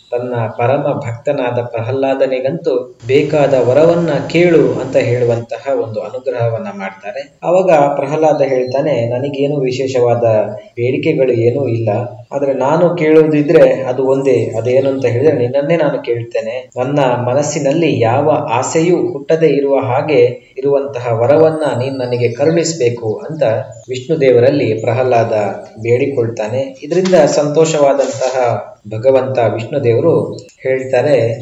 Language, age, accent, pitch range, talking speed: Kannada, 20-39, native, 120-150 Hz, 95 wpm